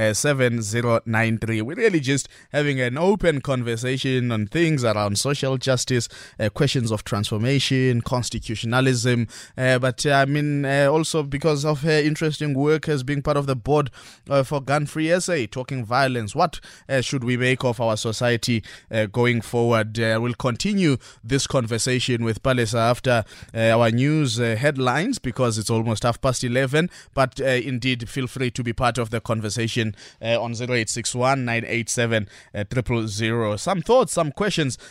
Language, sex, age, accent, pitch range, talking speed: English, male, 20-39, South African, 115-145 Hz, 160 wpm